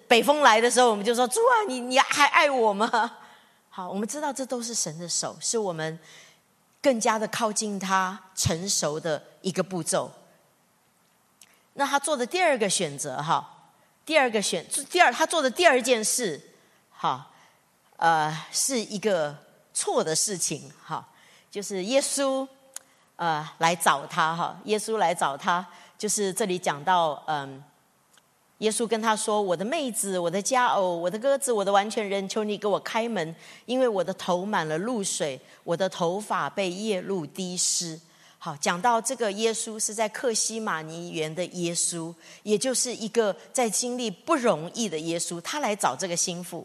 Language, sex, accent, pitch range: English, female, American, 175-235 Hz